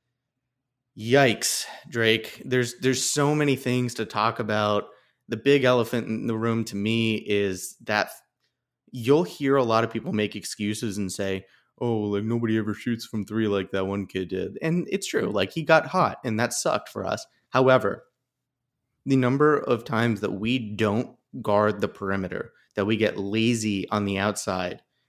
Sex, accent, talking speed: male, American, 170 wpm